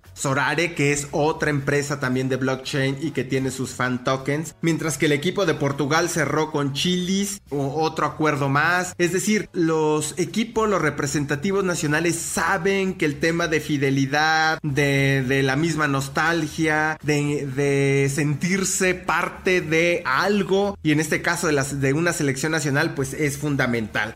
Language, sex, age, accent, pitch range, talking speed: English, male, 30-49, Mexican, 140-175 Hz, 160 wpm